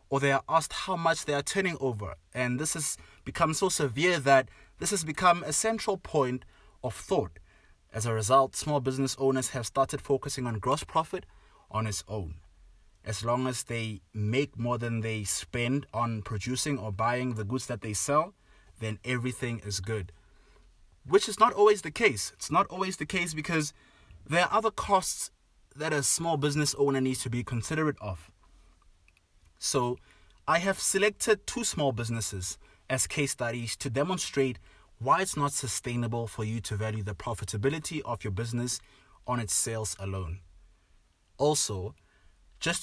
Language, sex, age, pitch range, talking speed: English, male, 20-39, 105-145 Hz, 165 wpm